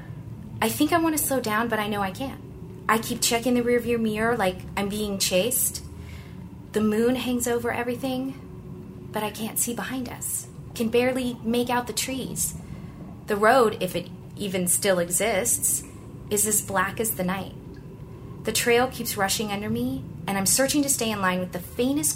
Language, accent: English, American